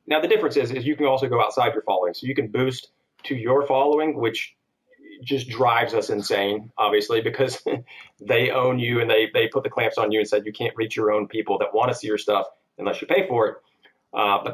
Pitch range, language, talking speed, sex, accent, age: 105-140 Hz, English, 240 wpm, male, American, 40-59